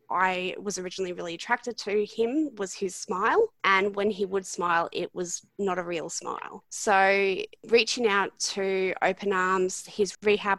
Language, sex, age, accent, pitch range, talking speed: English, female, 20-39, Australian, 185-215 Hz, 165 wpm